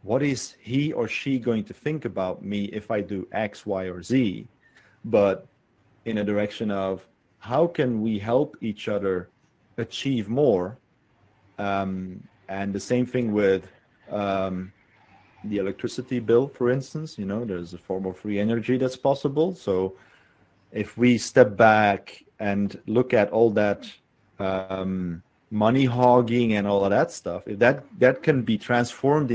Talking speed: 155 wpm